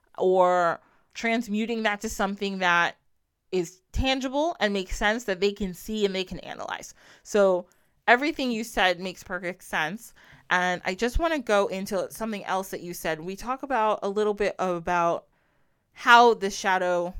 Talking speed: 170 wpm